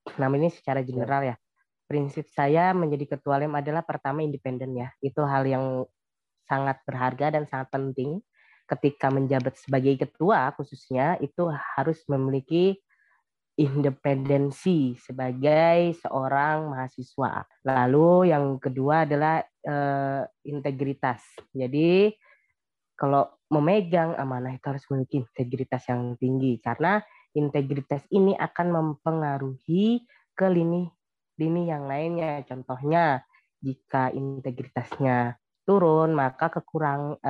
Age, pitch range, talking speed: 20-39, 135-160 Hz, 105 wpm